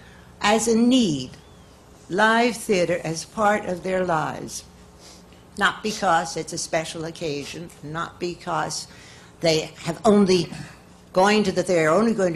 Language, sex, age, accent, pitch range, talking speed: English, female, 60-79, American, 160-205 Hz, 135 wpm